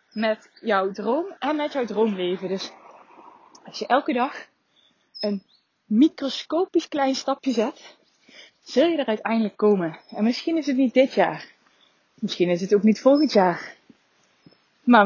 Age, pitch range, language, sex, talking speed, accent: 20-39, 210-265 Hz, Dutch, female, 150 wpm, Dutch